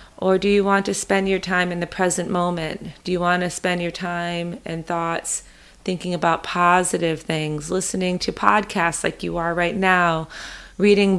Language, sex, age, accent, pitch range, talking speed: English, female, 30-49, American, 170-195 Hz, 180 wpm